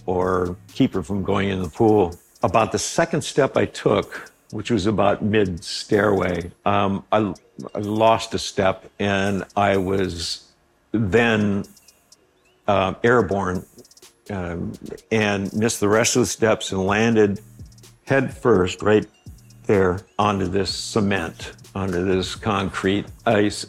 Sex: male